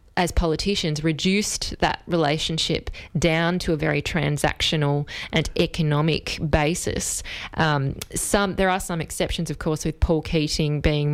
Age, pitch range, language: 20-39, 160-185 Hz, English